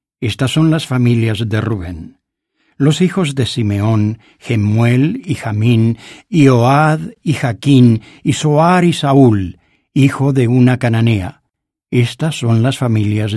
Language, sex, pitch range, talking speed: English, male, 115-145 Hz, 130 wpm